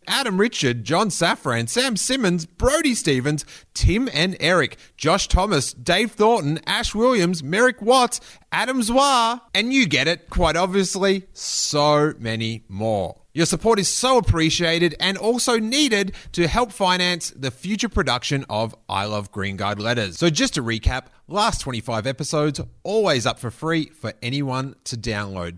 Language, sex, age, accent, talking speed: English, male, 30-49, Australian, 155 wpm